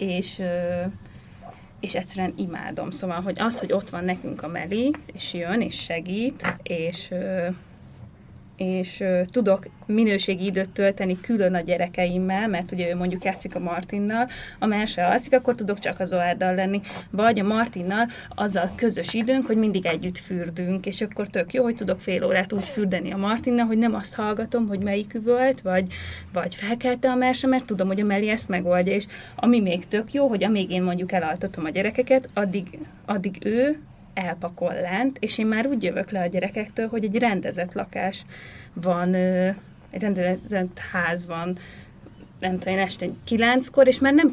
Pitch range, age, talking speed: 180-220 Hz, 20-39, 170 wpm